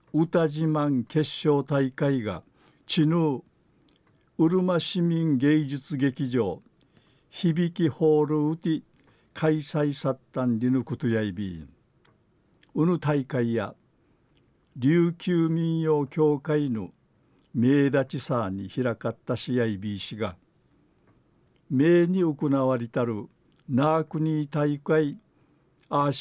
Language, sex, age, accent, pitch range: Japanese, male, 60-79, native, 125-160 Hz